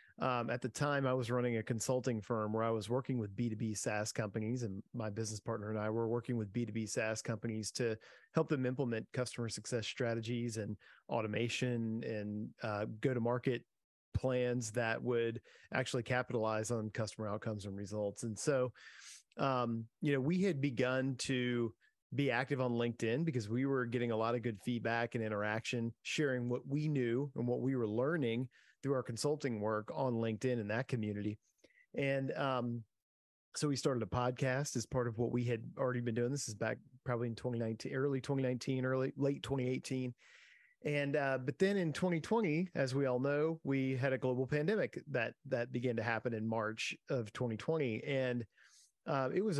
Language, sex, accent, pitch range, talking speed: English, male, American, 115-135 Hz, 185 wpm